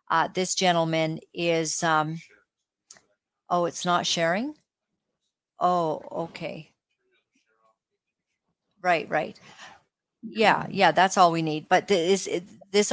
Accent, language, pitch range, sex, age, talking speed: American, English, 175-190 Hz, female, 40-59, 100 wpm